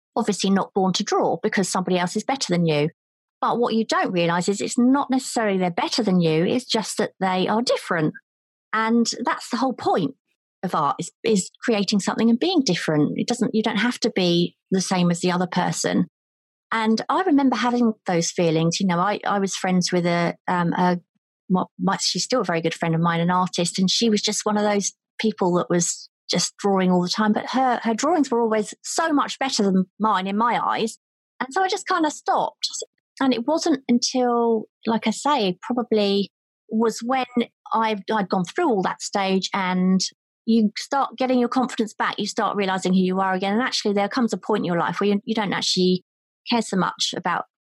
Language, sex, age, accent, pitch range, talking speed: English, female, 30-49, British, 185-235 Hz, 210 wpm